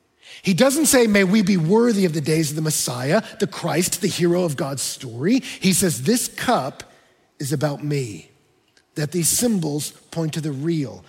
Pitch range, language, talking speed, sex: 155-230 Hz, English, 185 wpm, male